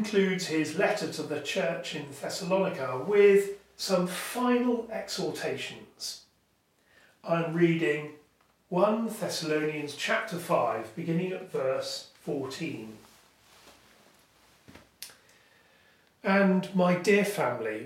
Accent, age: British, 40-59